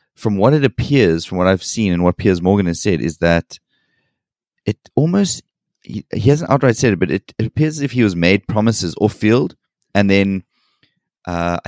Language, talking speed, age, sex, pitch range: English, 195 wpm, 20-39, male, 90-110 Hz